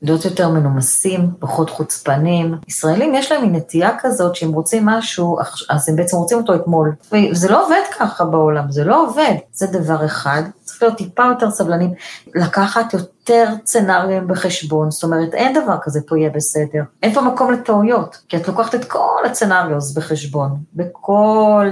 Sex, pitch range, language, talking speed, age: female, 165-225 Hz, Hebrew, 165 wpm, 30-49